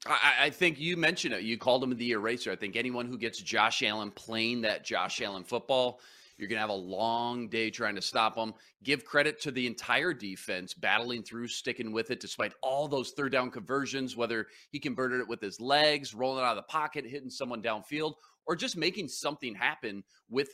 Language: English